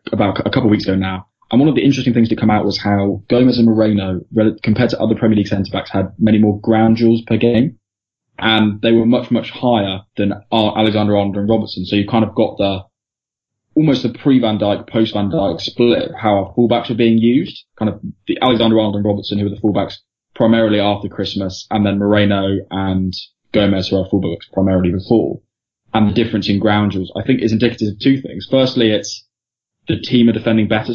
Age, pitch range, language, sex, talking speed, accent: 10-29, 100-115 Hz, English, male, 205 wpm, British